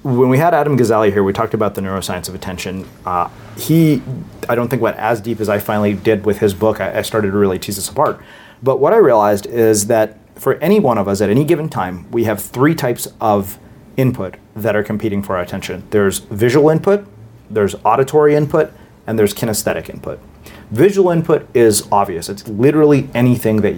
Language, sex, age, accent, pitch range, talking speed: English, male, 30-49, American, 105-135 Hz, 205 wpm